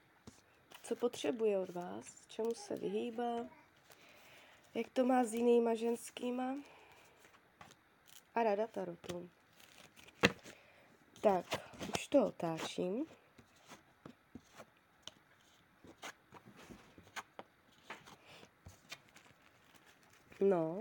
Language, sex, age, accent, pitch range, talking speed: Czech, female, 20-39, native, 215-260 Hz, 60 wpm